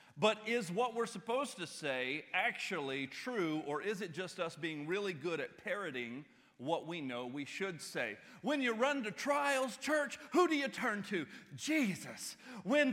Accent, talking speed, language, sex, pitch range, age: American, 175 wpm, English, male, 175-245 Hz, 40-59